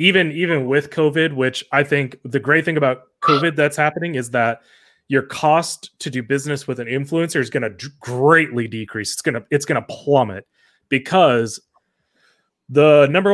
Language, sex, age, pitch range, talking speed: English, male, 30-49, 125-155 Hz, 180 wpm